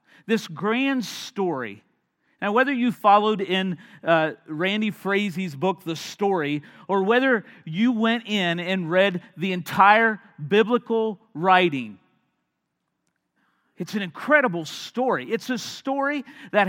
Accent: American